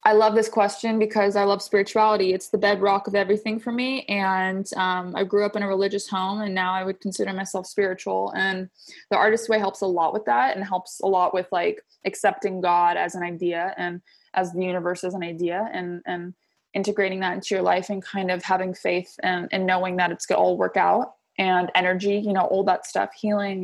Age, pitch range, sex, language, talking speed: 20-39, 185-210 Hz, female, English, 225 wpm